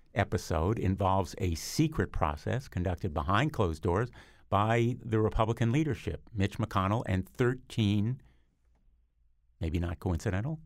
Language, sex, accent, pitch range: English, male, American, 90-110 Hz